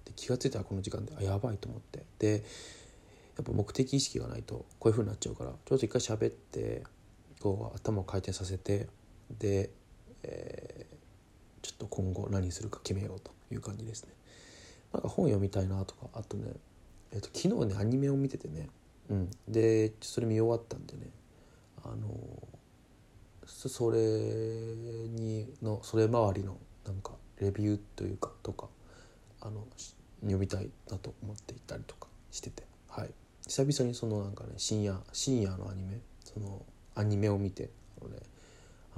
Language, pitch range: Japanese, 95-115 Hz